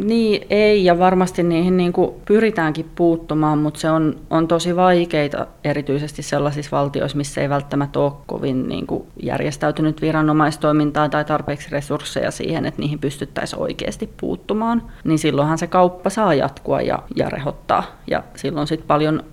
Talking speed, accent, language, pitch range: 150 wpm, native, Finnish, 145-180 Hz